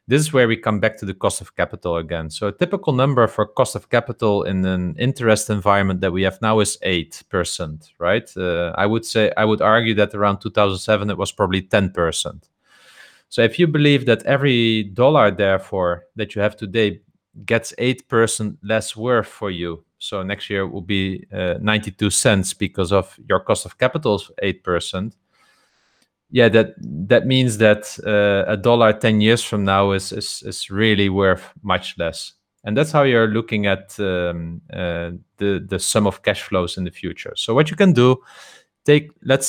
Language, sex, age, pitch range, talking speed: English, male, 30-49, 95-115 Hz, 185 wpm